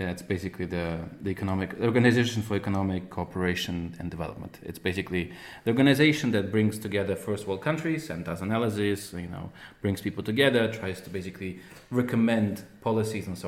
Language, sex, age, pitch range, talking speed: English, male, 30-49, 95-120 Hz, 160 wpm